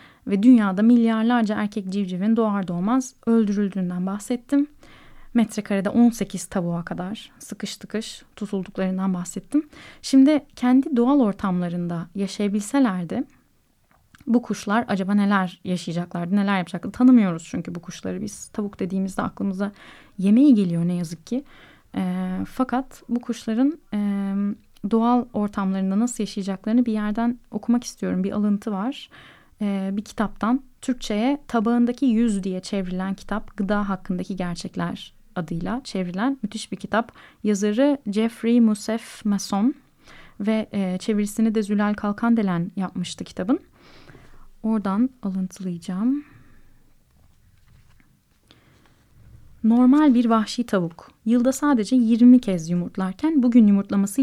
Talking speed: 110 wpm